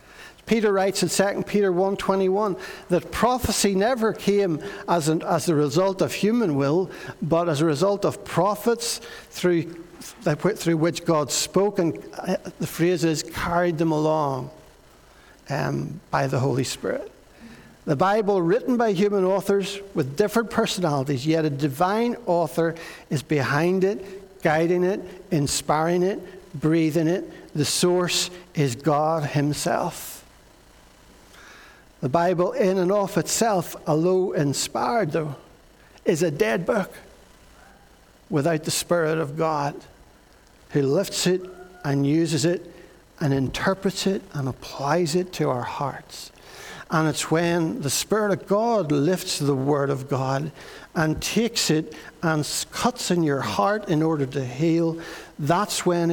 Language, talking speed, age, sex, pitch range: English, 135 wpm, 60-79, male, 155-190 Hz